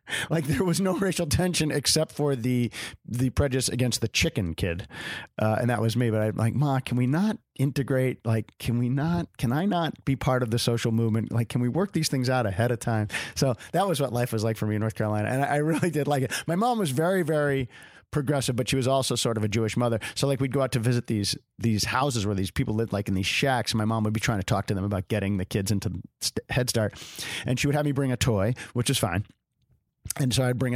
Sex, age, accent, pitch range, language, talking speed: male, 40-59, American, 110-140 Hz, English, 260 wpm